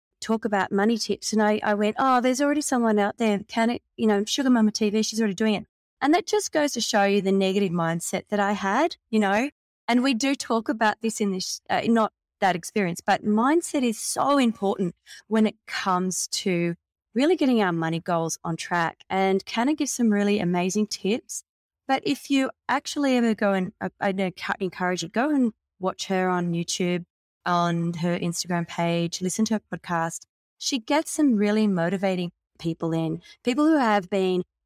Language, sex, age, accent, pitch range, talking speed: English, female, 20-39, Australian, 175-230 Hz, 195 wpm